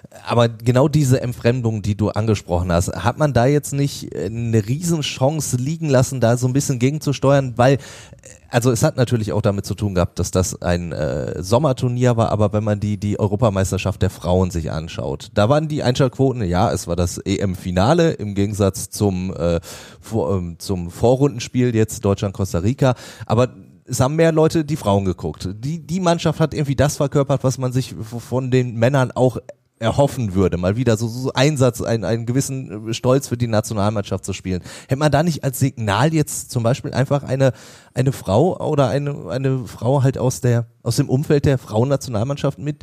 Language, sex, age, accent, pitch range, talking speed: German, male, 30-49, German, 105-140 Hz, 185 wpm